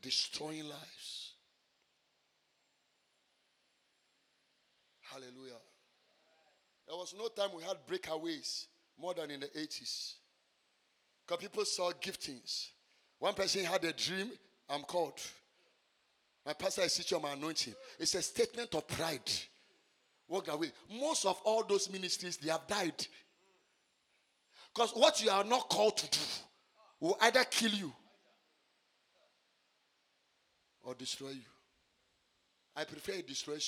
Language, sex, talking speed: English, male, 120 wpm